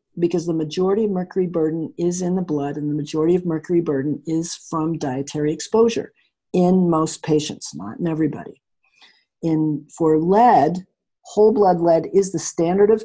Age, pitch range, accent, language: 50-69, 155-185 Hz, American, English